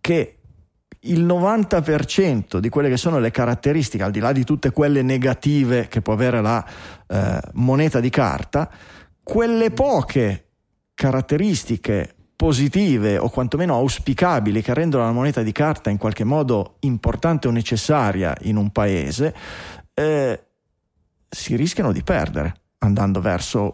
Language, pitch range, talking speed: Italian, 105-140 Hz, 135 wpm